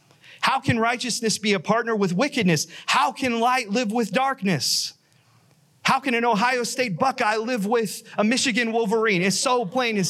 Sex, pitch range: male, 135-185 Hz